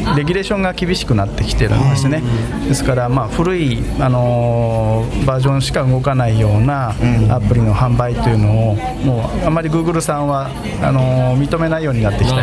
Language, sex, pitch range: Japanese, male, 115-140 Hz